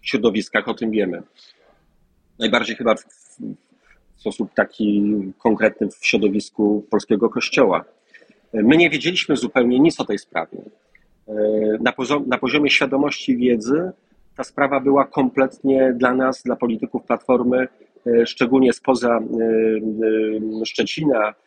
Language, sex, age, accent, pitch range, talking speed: Polish, male, 40-59, native, 120-145 Hz, 115 wpm